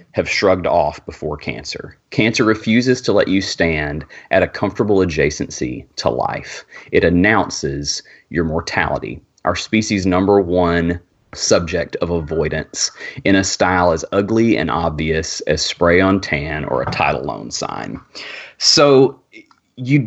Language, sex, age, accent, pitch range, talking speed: English, male, 30-49, American, 90-120 Hz, 140 wpm